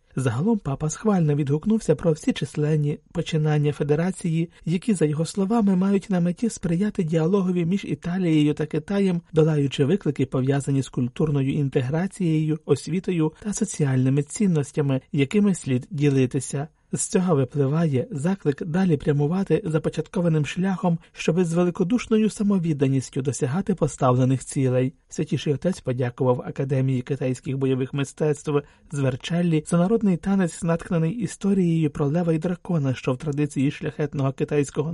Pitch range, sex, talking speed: 140-190 Hz, male, 125 wpm